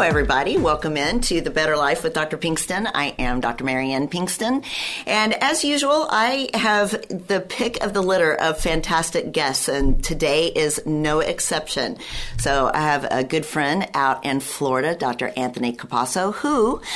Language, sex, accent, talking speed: English, female, American, 165 wpm